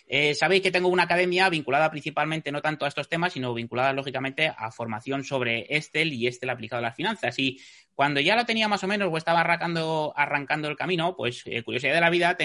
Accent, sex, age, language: Spanish, male, 30-49, Spanish